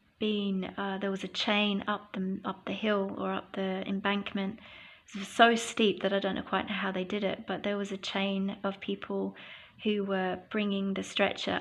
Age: 30-49